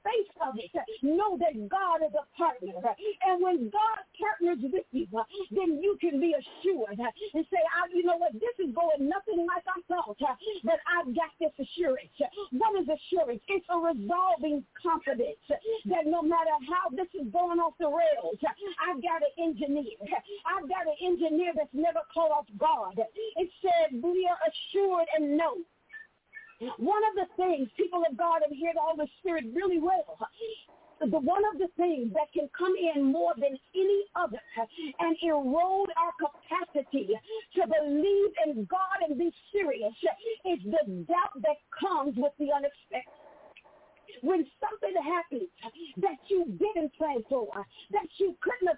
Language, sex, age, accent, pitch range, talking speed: English, female, 50-69, American, 300-370 Hz, 160 wpm